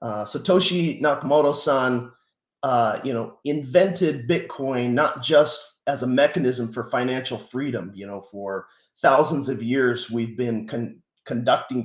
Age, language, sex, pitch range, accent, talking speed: 30-49, English, male, 120-155 Hz, American, 120 wpm